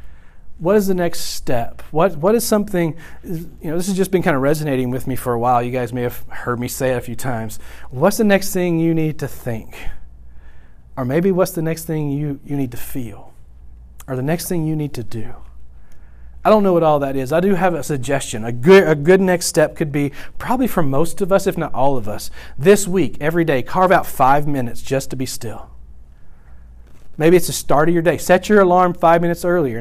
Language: English